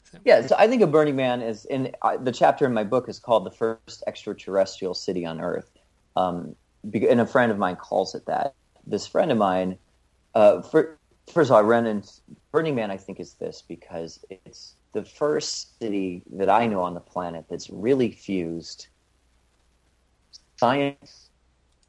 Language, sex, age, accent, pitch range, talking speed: English, male, 40-59, American, 85-110 Hz, 175 wpm